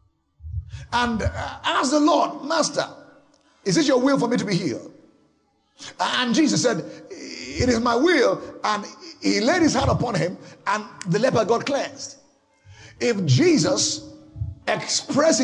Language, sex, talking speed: English, male, 140 wpm